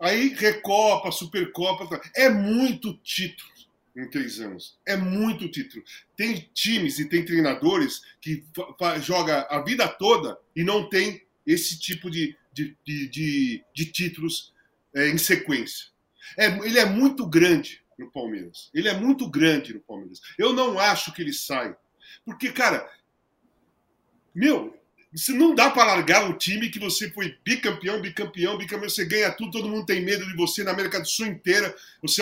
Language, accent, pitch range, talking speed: Portuguese, Brazilian, 175-225 Hz, 165 wpm